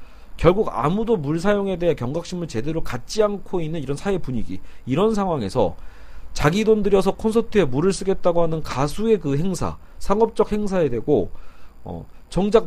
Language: Korean